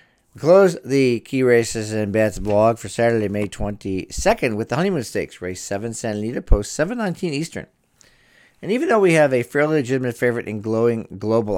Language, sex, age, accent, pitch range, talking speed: English, male, 50-69, American, 105-130 Hz, 180 wpm